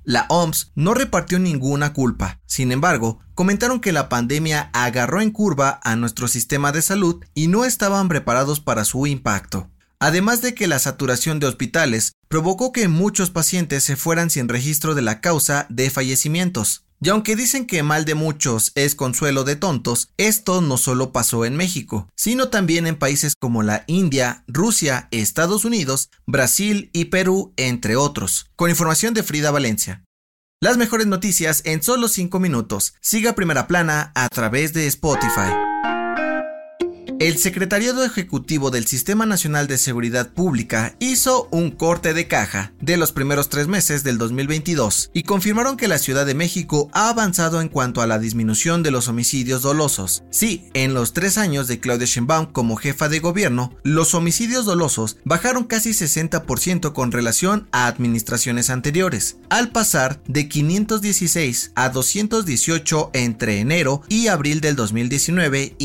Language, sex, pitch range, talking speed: Spanish, male, 125-180 Hz, 155 wpm